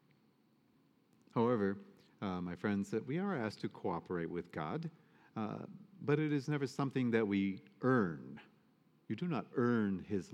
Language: English